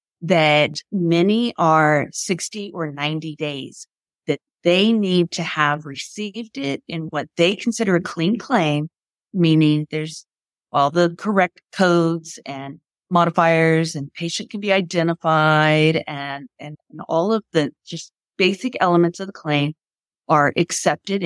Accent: American